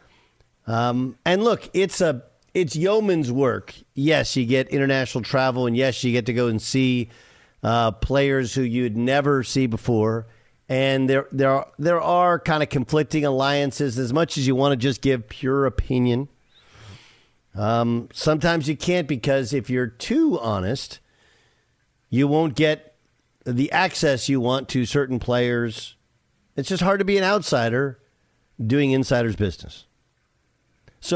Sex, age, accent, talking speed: male, 50-69, American, 150 wpm